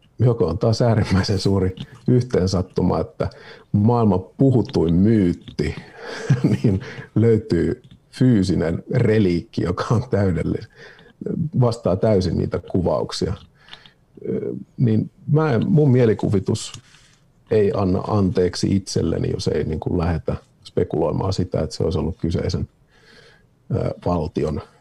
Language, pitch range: Finnish, 90-120 Hz